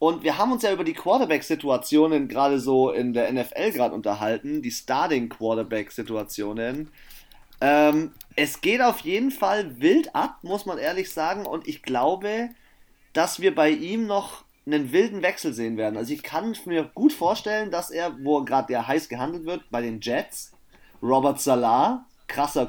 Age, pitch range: 30-49, 140-225 Hz